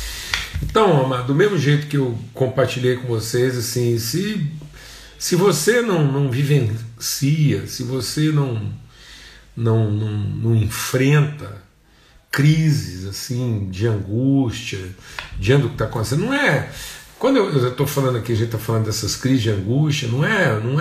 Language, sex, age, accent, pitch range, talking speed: Portuguese, male, 50-69, Brazilian, 115-150 Hz, 145 wpm